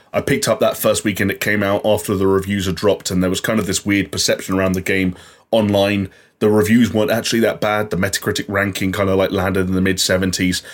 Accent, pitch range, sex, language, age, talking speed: British, 95-115 Hz, male, English, 20-39, 235 wpm